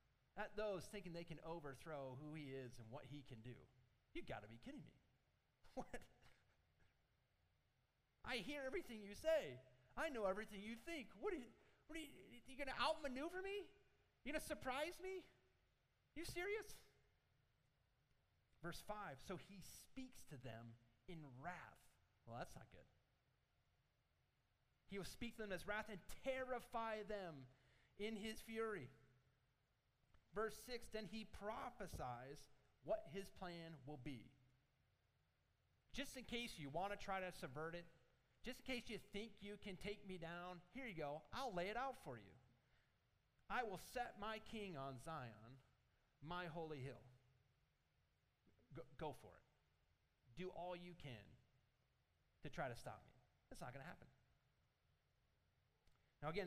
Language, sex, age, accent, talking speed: English, male, 30-49, American, 155 wpm